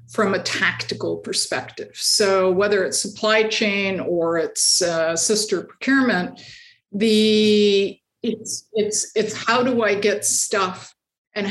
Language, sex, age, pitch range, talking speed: English, female, 50-69, 175-215 Hz, 125 wpm